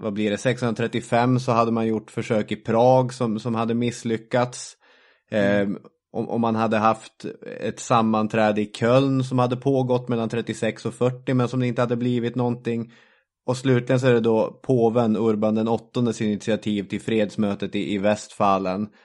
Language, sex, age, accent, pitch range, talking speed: English, male, 20-39, Swedish, 105-120 Hz, 165 wpm